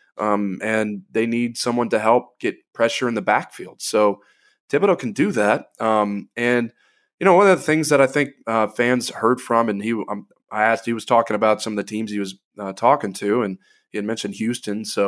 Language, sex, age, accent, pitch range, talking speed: English, male, 20-39, American, 100-120 Hz, 225 wpm